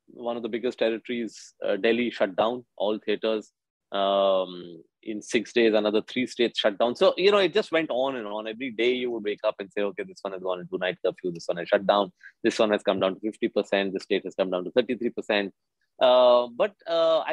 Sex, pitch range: male, 100-145 Hz